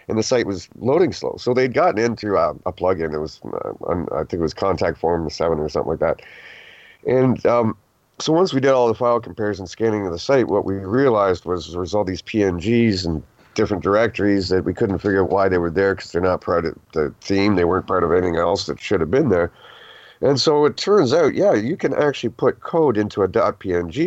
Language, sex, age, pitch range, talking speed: English, male, 40-59, 95-130 Hz, 235 wpm